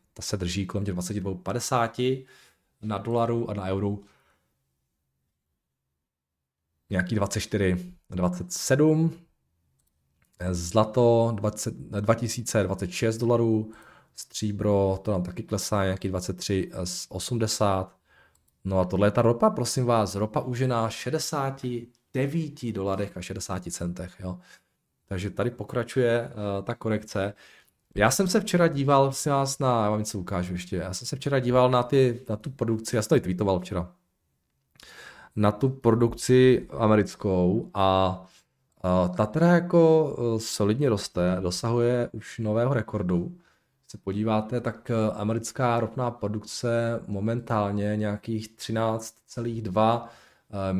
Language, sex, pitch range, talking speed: Czech, male, 95-120 Hz, 115 wpm